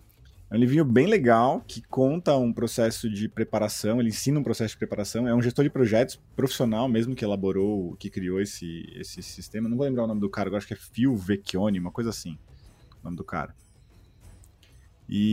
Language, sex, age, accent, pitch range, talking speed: Portuguese, male, 20-39, Brazilian, 100-125 Hz, 205 wpm